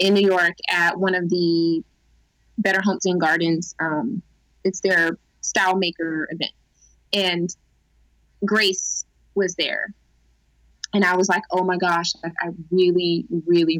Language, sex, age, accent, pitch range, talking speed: English, female, 20-39, American, 155-190 Hz, 140 wpm